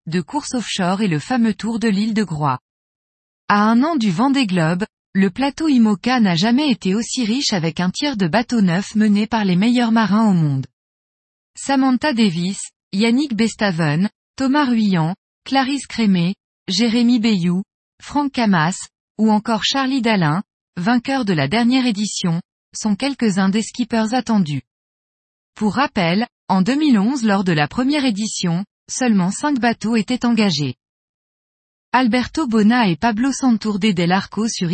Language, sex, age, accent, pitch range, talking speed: French, female, 20-39, French, 185-240 Hz, 150 wpm